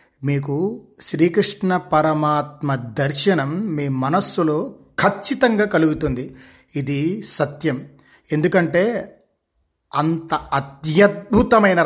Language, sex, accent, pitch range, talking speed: Telugu, male, native, 140-180 Hz, 65 wpm